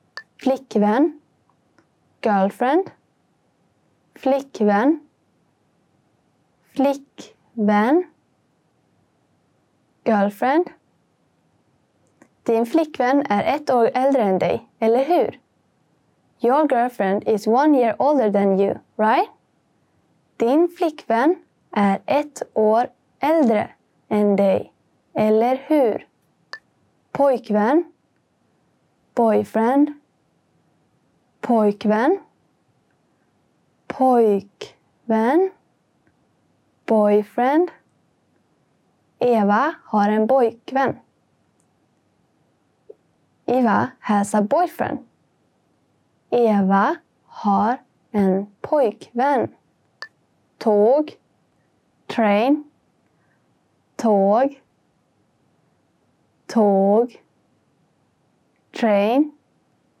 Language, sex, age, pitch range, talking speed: English, female, 20-39, 210-285 Hz, 55 wpm